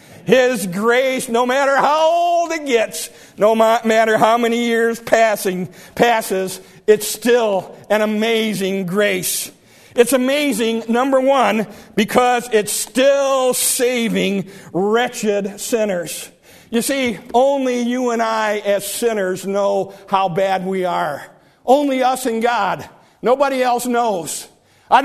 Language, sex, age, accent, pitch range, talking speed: English, male, 50-69, American, 205-245 Hz, 120 wpm